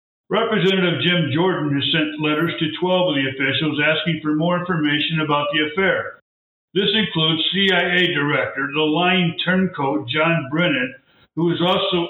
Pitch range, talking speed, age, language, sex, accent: 150-180 Hz, 150 wpm, 60-79, English, male, American